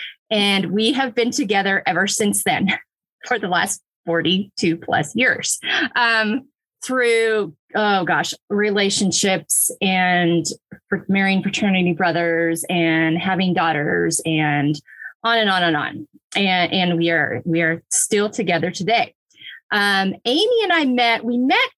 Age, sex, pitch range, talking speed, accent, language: 20-39, female, 180-230 Hz, 135 wpm, American, English